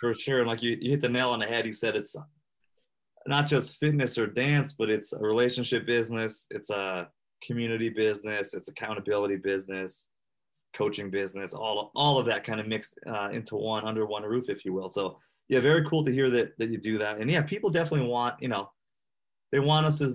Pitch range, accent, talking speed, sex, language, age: 110-140 Hz, American, 215 wpm, male, English, 20-39